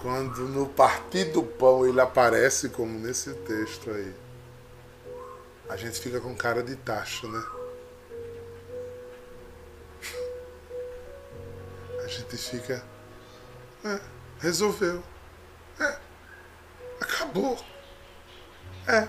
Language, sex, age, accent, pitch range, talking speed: Portuguese, male, 20-39, Brazilian, 120-185 Hz, 85 wpm